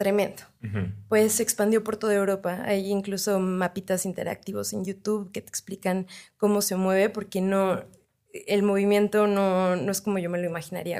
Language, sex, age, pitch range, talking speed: Spanish, female, 20-39, 180-210 Hz, 170 wpm